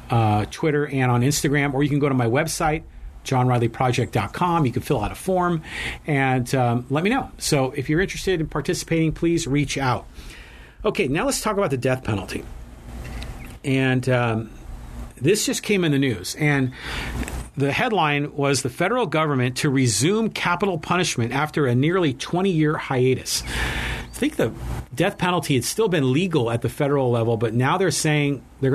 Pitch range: 120-165 Hz